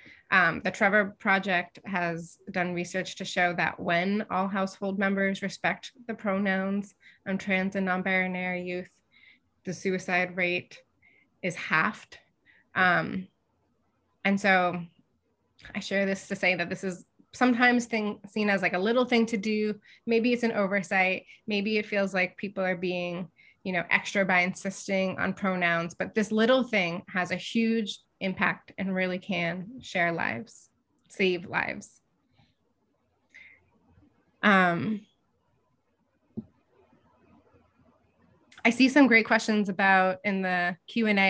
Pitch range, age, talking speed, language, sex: 180-210 Hz, 20-39, 130 wpm, English, female